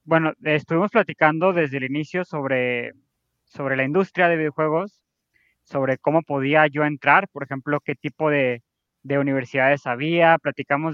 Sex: male